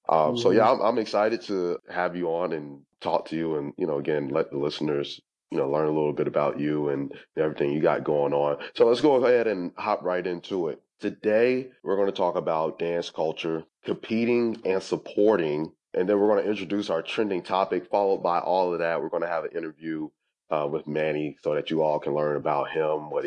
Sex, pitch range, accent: male, 75-90 Hz, American